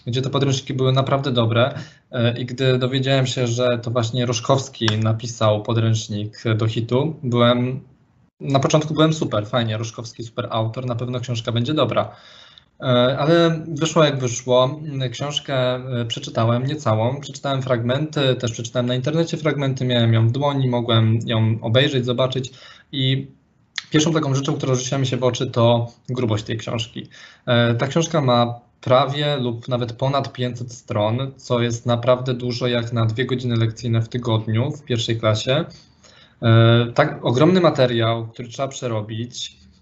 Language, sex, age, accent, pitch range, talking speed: Polish, male, 20-39, native, 120-140 Hz, 150 wpm